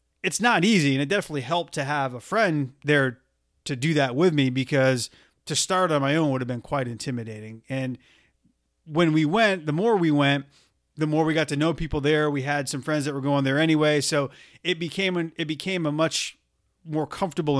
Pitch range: 135-160 Hz